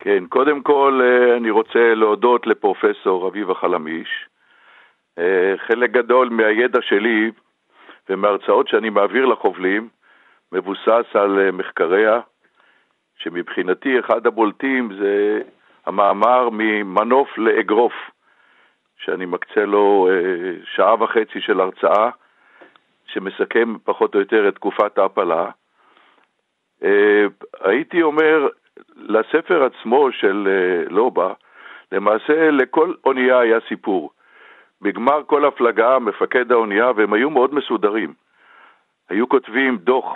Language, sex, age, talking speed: Hebrew, male, 60-79, 95 wpm